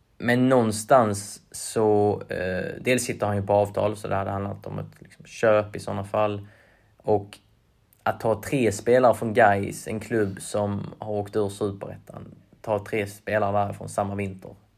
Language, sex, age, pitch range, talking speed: Swedish, male, 20-39, 100-115 Hz, 165 wpm